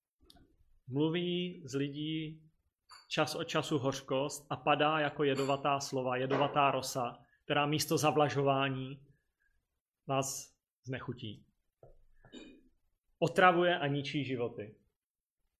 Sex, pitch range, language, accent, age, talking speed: male, 130-160 Hz, Czech, native, 30-49, 90 wpm